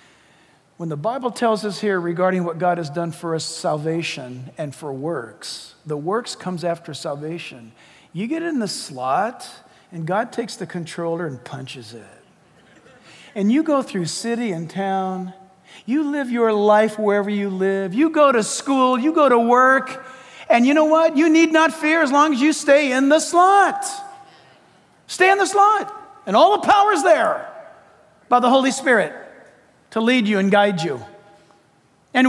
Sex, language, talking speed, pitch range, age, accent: male, English, 175 wpm, 200-330 Hz, 50-69, American